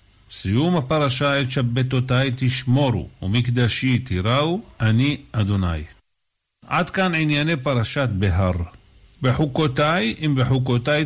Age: 50-69